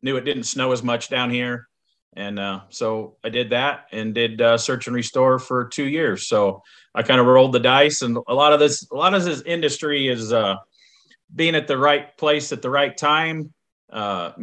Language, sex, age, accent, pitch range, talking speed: English, male, 40-59, American, 120-150 Hz, 215 wpm